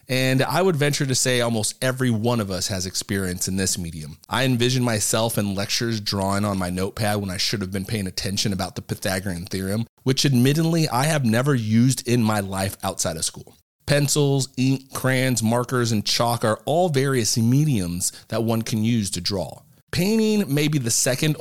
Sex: male